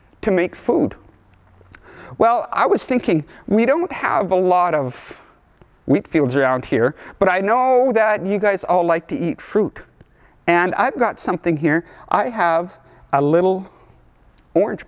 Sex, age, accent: male, 50-69, American